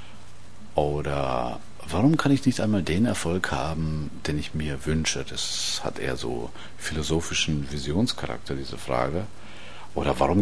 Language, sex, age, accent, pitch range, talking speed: German, male, 50-69, German, 70-105 Hz, 130 wpm